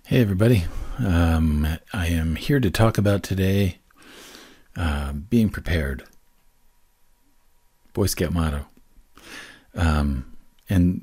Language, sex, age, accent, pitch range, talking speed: English, male, 40-59, American, 75-95 Hz, 100 wpm